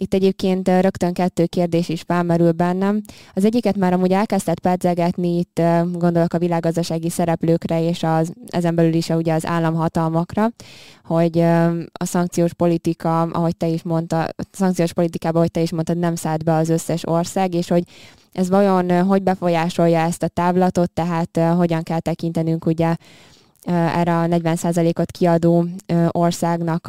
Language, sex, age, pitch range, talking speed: Hungarian, female, 20-39, 165-180 Hz, 150 wpm